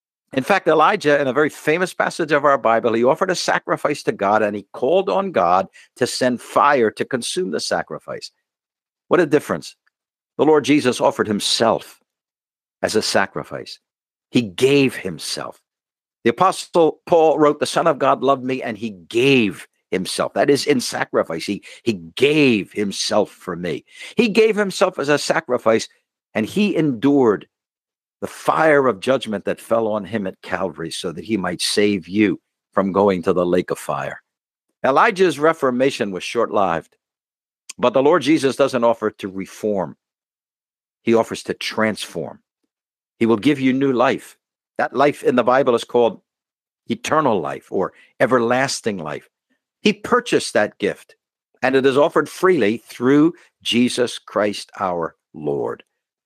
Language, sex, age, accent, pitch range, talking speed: English, male, 60-79, American, 110-160 Hz, 155 wpm